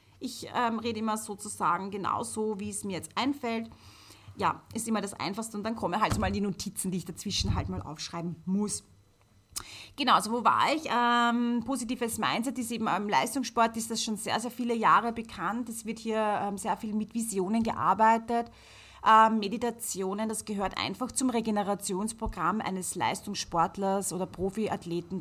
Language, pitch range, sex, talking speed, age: German, 190-235 Hz, female, 170 wpm, 30-49